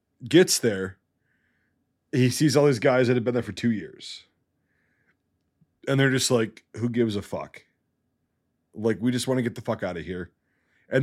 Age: 30-49